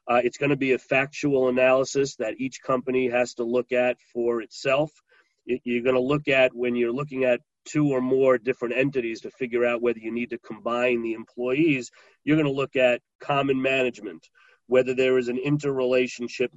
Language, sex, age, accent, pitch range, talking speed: English, male, 40-59, American, 120-130 Hz, 190 wpm